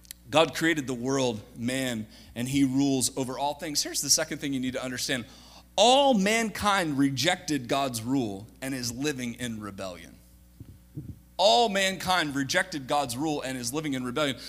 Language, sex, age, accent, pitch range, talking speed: English, male, 30-49, American, 135-225 Hz, 160 wpm